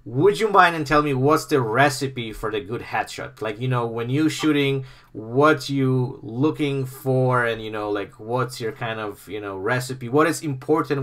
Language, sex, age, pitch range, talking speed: English, male, 30-49, 110-140 Hz, 200 wpm